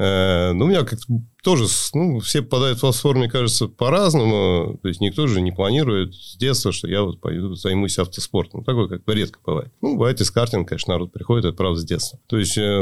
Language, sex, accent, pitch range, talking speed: Russian, male, native, 105-140 Hz, 210 wpm